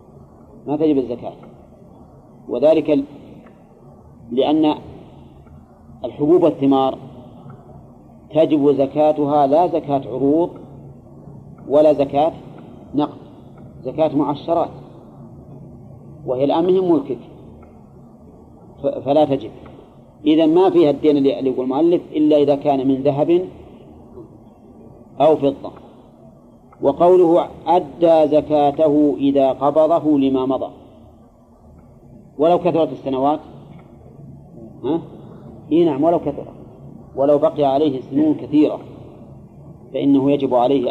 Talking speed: 85 wpm